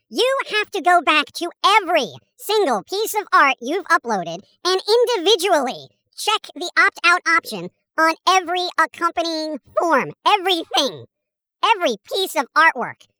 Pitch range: 305-385 Hz